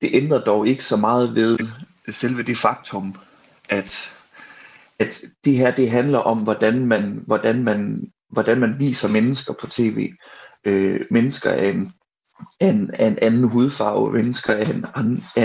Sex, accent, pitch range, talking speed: male, native, 110-130 Hz, 150 wpm